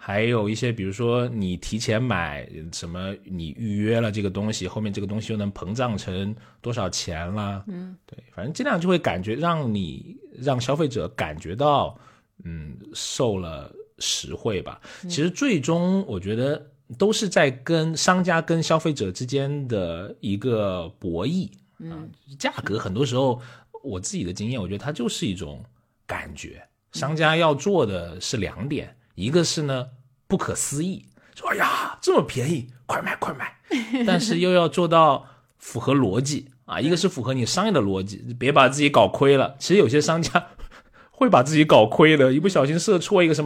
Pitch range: 105-160 Hz